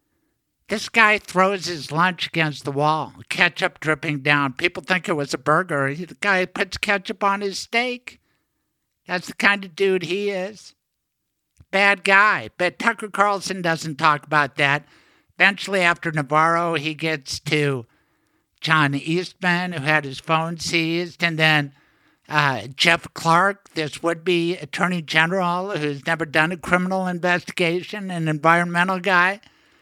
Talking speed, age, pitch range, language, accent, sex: 145 wpm, 60-79, 160-225 Hz, English, American, male